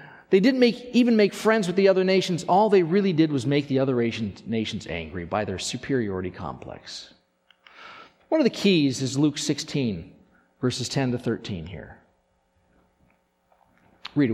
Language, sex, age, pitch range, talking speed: English, male, 40-59, 120-180 Hz, 160 wpm